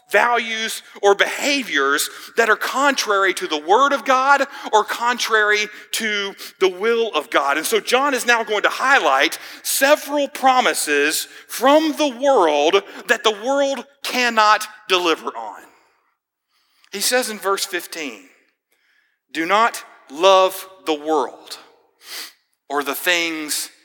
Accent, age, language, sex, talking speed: American, 40-59, English, male, 125 wpm